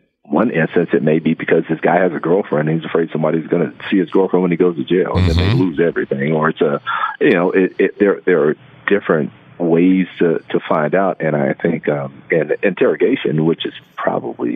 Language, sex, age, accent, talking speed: English, male, 50-69, American, 225 wpm